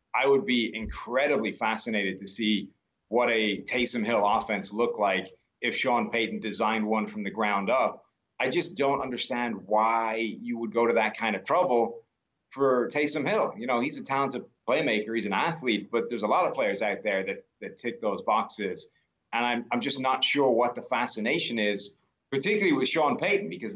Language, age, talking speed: English, 30-49, 190 wpm